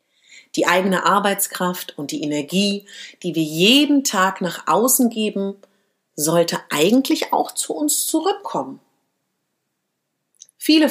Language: German